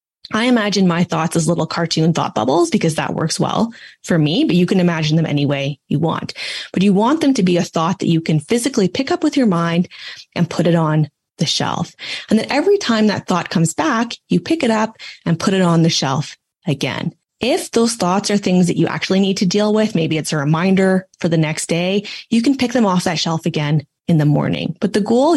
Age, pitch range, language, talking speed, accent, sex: 20-39, 165-215 Hz, English, 235 wpm, American, female